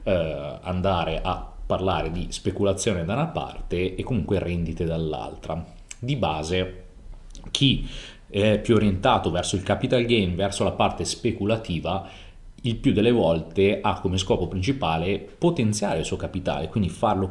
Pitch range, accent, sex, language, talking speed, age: 85-105 Hz, native, male, Italian, 140 wpm, 30-49